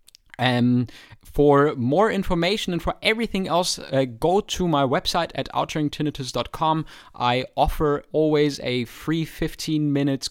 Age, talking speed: 20-39, 130 wpm